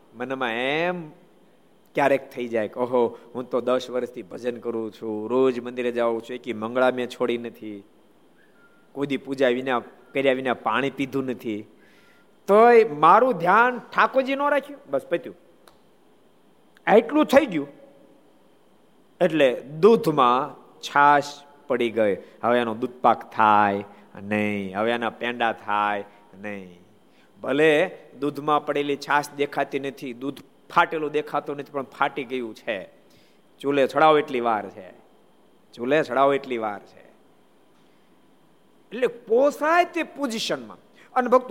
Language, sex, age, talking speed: Gujarati, male, 50-69, 70 wpm